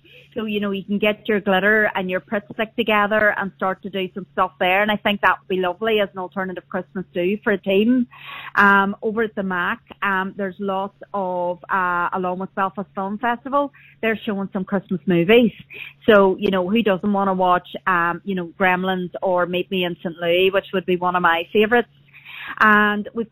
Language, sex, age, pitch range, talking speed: English, female, 30-49, 180-210 Hz, 210 wpm